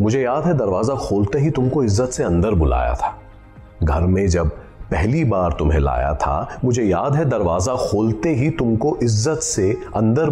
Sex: male